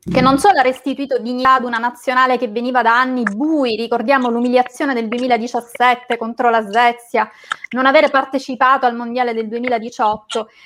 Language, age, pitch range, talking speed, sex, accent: Italian, 20-39, 240-290 Hz, 160 wpm, female, native